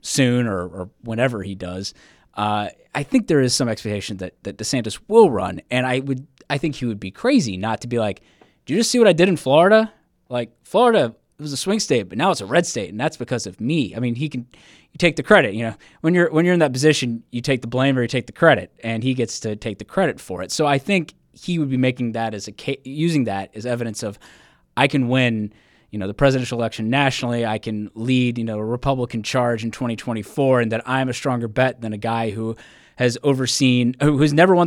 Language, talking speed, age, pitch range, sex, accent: English, 250 wpm, 20-39, 110-135 Hz, male, American